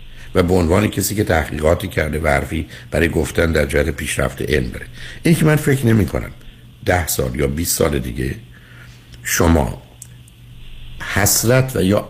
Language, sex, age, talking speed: Persian, male, 60-79, 155 wpm